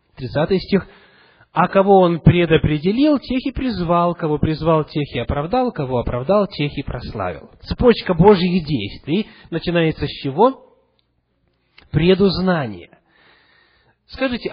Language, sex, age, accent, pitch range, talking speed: Russian, male, 30-49, native, 135-215 Hz, 110 wpm